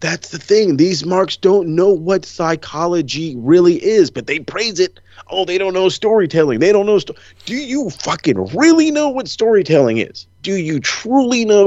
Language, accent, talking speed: English, American, 180 wpm